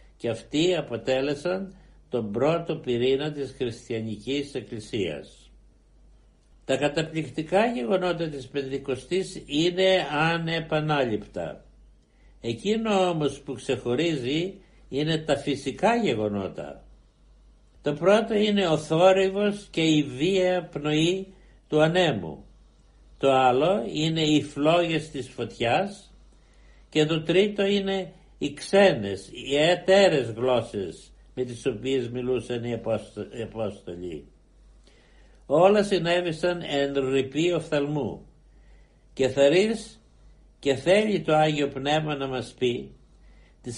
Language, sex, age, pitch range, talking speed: Greek, male, 60-79, 130-180 Hz, 100 wpm